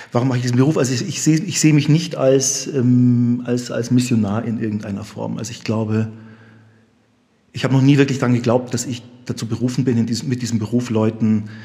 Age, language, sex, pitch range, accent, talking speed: 40-59, German, male, 110-125 Hz, German, 215 wpm